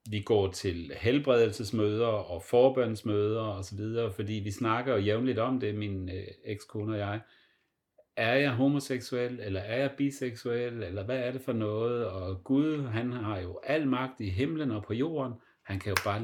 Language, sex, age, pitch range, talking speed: Danish, male, 40-59, 95-125 Hz, 175 wpm